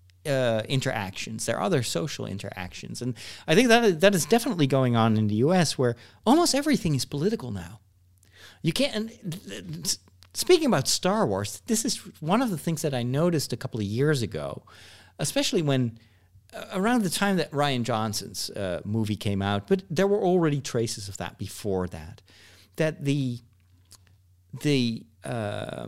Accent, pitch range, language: American, 100-155 Hz, English